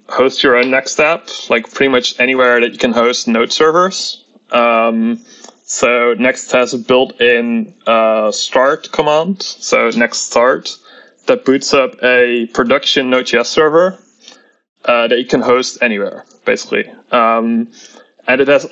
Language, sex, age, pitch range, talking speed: English, male, 20-39, 120-140 Hz, 145 wpm